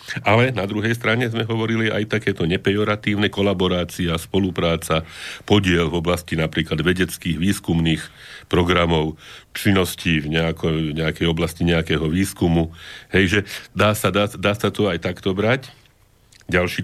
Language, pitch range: Slovak, 90-105 Hz